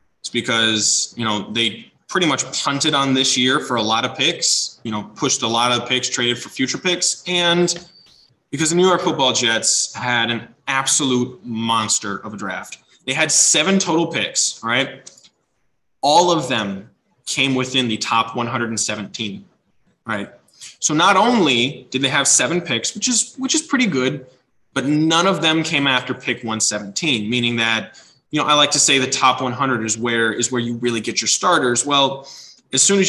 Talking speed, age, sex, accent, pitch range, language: 185 wpm, 20-39, male, American, 115-145 Hz, English